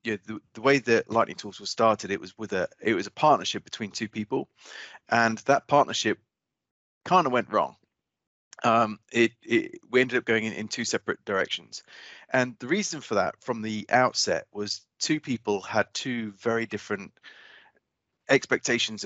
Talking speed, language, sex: 175 wpm, English, male